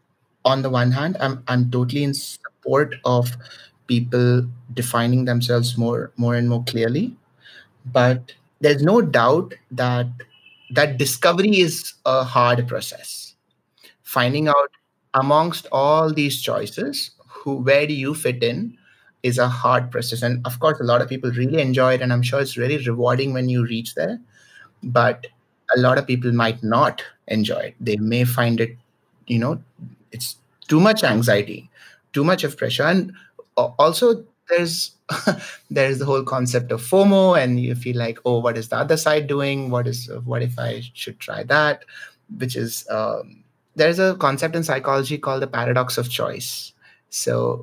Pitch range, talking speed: 120-145 Hz, 165 wpm